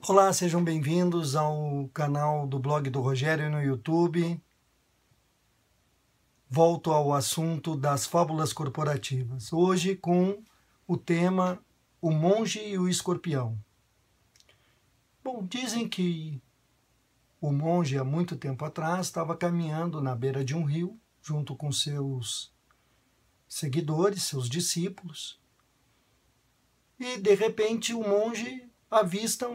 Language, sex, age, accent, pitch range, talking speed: Portuguese, male, 50-69, Brazilian, 135-195 Hz, 110 wpm